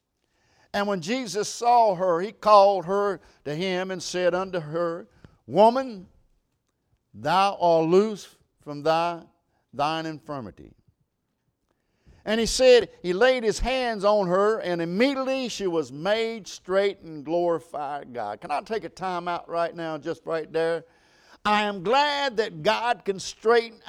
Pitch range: 185-245 Hz